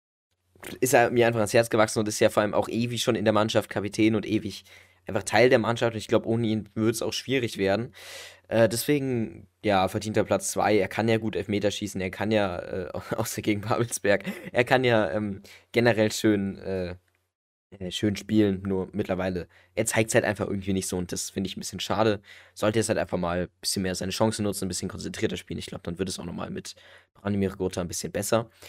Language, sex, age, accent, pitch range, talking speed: German, male, 20-39, German, 100-120 Hz, 230 wpm